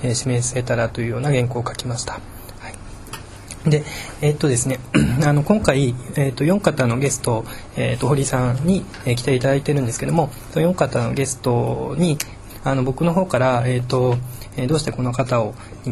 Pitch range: 120-150 Hz